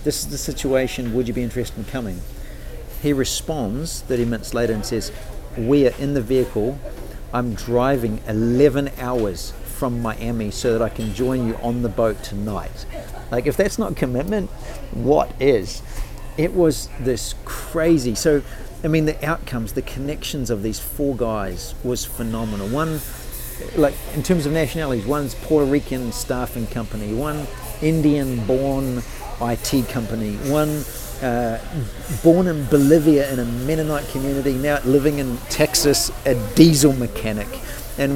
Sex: male